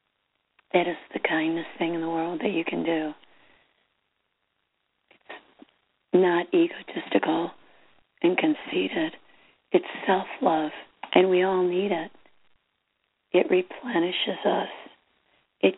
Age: 40-59